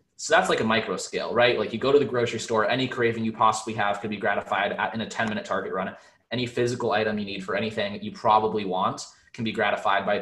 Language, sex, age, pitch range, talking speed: English, male, 20-39, 105-120 Hz, 260 wpm